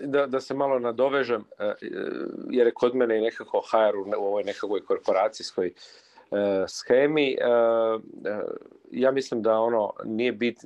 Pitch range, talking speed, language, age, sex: 95-125 Hz, 145 wpm, Croatian, 40-59, male